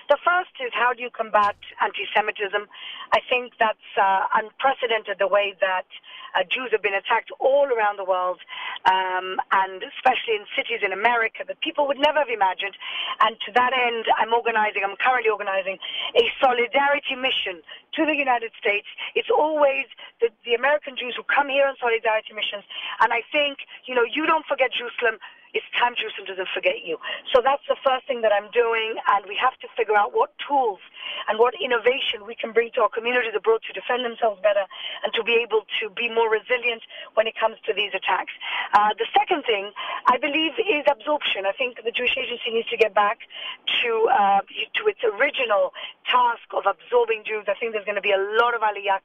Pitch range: 215-345 Hz